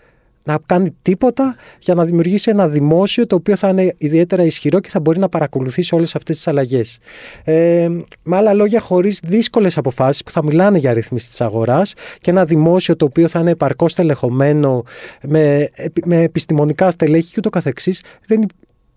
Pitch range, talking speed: 145-185 Hz, 165 wpm